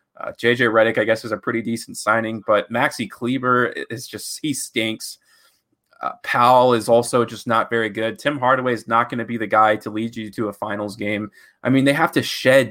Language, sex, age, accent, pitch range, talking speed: English, male, 20-39, American, 105-125 Hz, 220 wpm